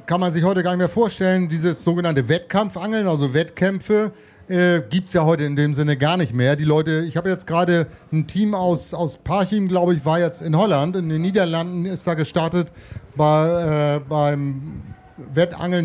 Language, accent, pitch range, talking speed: German, German, 150-180 Hz, 185 wpm